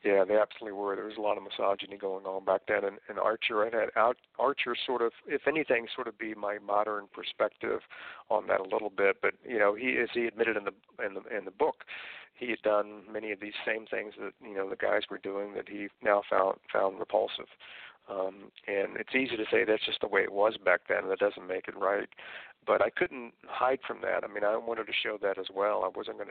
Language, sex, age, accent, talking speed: English, male, 50-69, American, 245 wpm